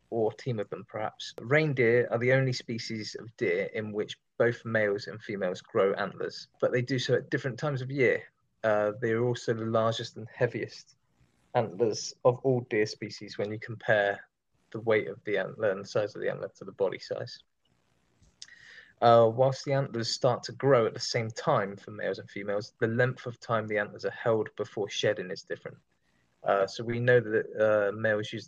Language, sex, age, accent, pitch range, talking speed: English, male, 20-39, British, 105-130 Hz, 200 wpm